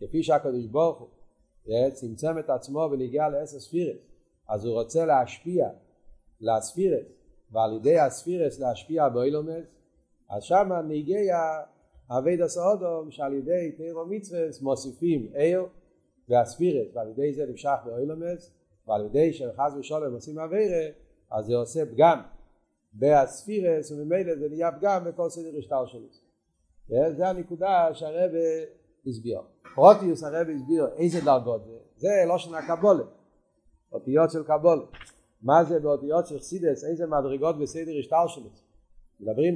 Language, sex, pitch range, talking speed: Hebrew, male, 135-170 Hz, 125 wpm